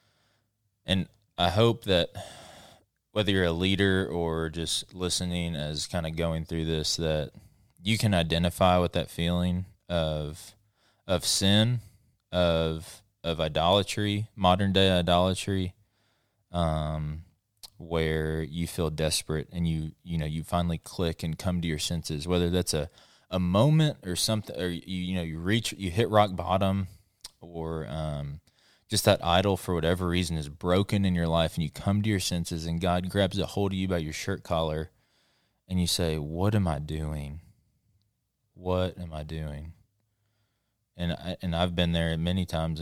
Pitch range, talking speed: 80-100 Hz, 165 wpm